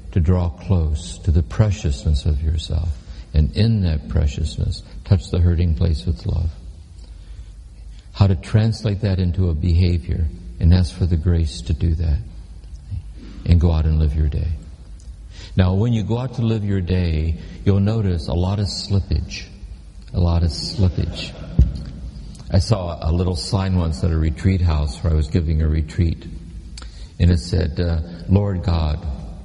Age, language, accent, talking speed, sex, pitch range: 60-79, English, American, 165 wpm, male, 80-95 Hz